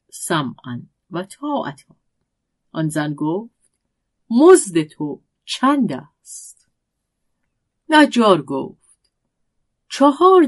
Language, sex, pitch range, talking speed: Persian, female, 155-255 Hz, 75 wpm